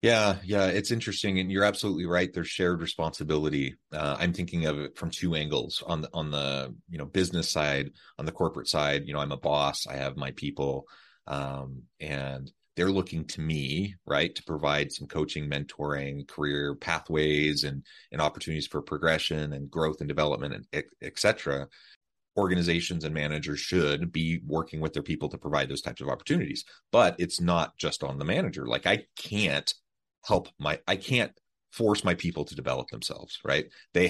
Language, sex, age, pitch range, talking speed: English, male, 30-49, 75-85 Hz, 185 wpm